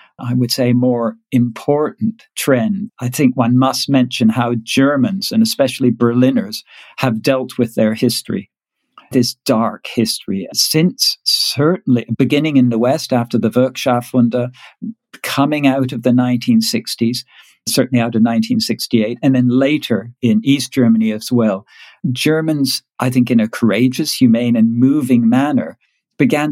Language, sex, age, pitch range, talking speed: English, male, 50-69, 120-150 Hz, 140 wpm